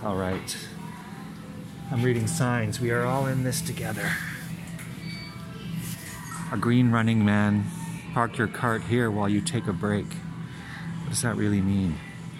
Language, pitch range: English, 105-165 Hz